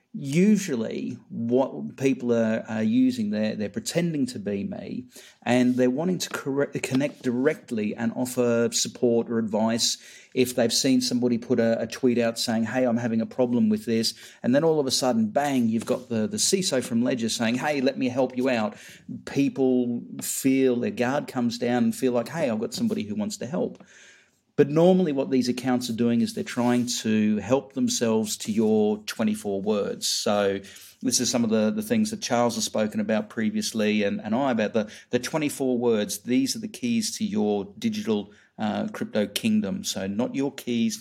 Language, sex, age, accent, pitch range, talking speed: English, male, 40-59, Australian, 115-160 Hz, 195 wpm